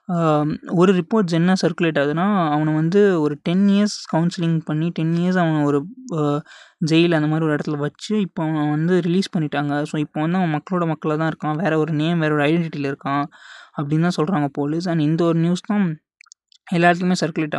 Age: 20-39